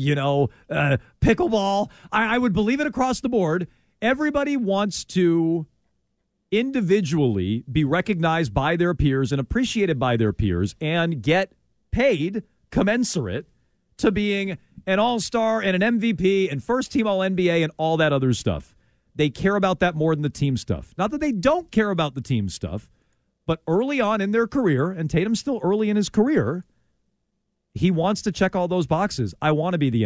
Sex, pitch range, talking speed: male, 140-215 Hz, 175 wpm